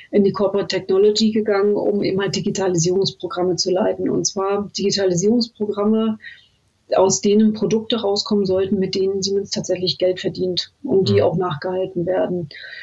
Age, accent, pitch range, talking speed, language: 40-59, German, 190-220 Hz, 155 wpm, German